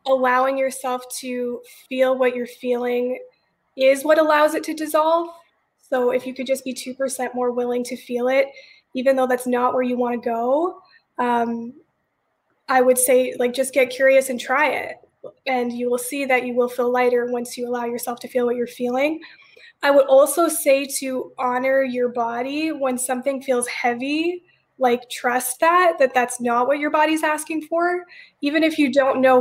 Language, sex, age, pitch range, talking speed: English, female, 20-39, 245-275 Hz, 185 wpm